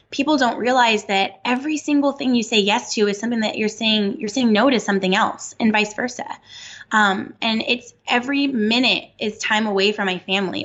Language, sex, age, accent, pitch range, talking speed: English, female, 10-29, American, 185-230 Hz, 205 wpm